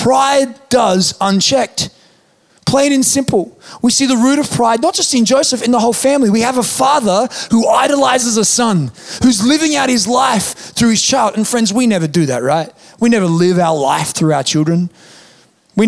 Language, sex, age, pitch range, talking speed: English, male, 30-49, 180-235 Hz, 195 wpm